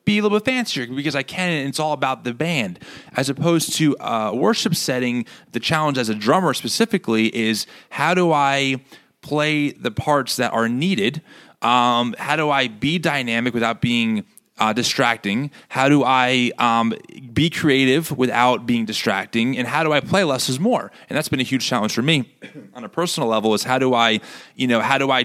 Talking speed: 200 wpm